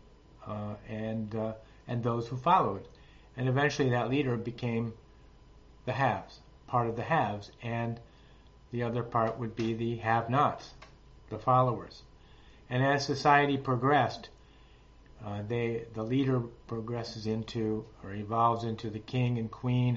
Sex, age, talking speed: male, 50-69, 135 wpm